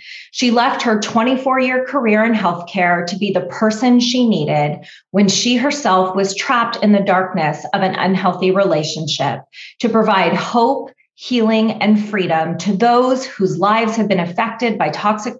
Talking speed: 160 wpm